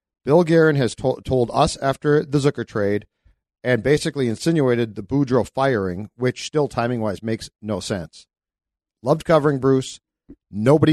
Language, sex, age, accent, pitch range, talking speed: English, male, 50-69, American, 110-135 Hz, 145 wpm